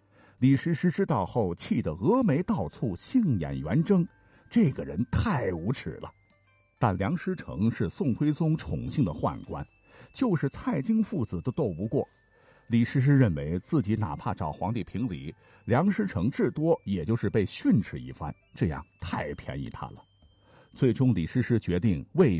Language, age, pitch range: Chinese, 50-69, 100-145 Hz